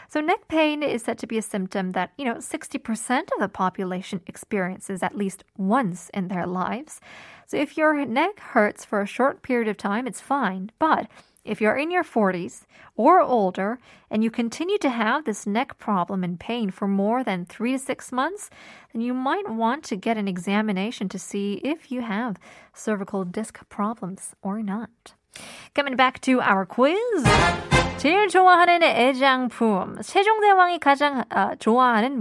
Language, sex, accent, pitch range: Korean, female, American, 205-295 Hz